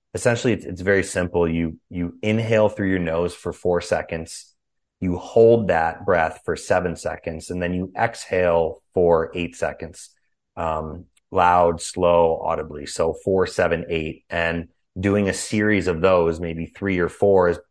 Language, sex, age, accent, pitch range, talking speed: English, male, 30-49, American, 85-100 Hz, 155 wpm